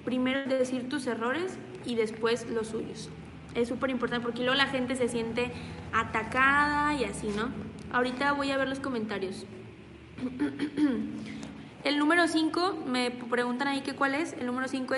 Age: 20-39